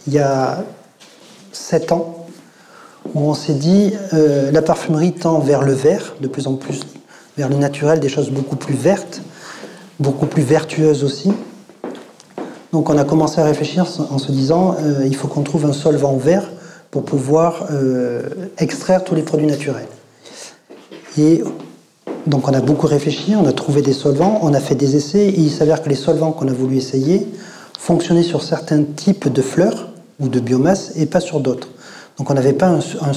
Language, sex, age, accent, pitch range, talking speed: French, male, 40-59, French, 140-170 Hz, 185 wpm